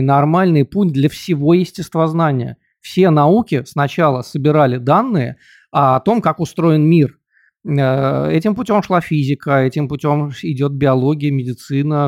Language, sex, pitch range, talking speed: Russian, male, 140-170 Hz, 120 wpm